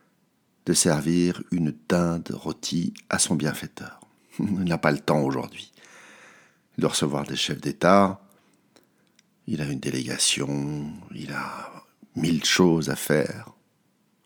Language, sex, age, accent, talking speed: French, male, 60-79, French, 120 wpm